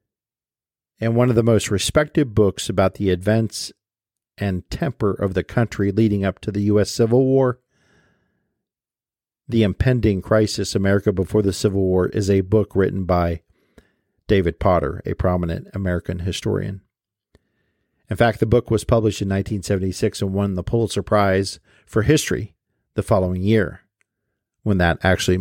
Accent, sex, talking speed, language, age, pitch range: American, male, 145 wpm, English, 50-69, 95-115 Hz